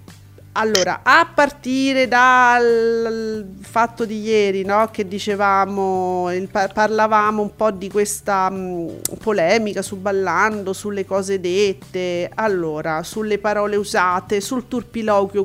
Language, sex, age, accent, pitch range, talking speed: Italian, female, 40-59, native, 195-235 Hz, 115 wpm